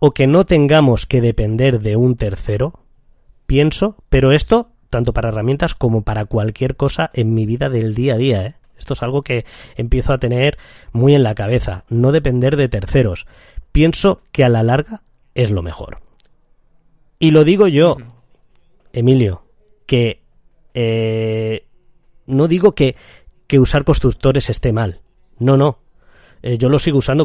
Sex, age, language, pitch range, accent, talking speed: male, 20-39, Spanish, 110-140 Hz, Spanish, 155 wpm